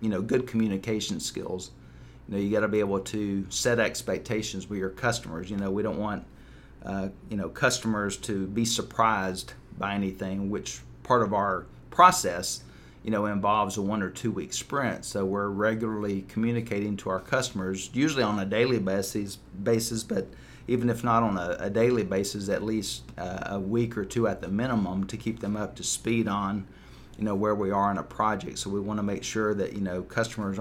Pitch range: 95-110 Hz